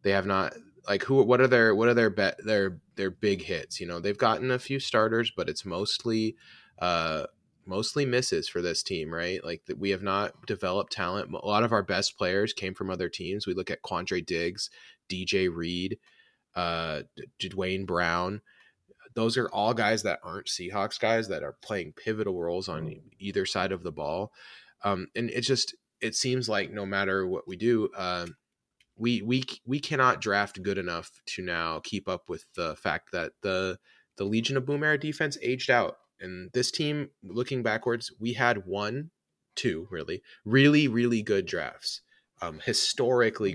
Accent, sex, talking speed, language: American, male, 185 wpm, English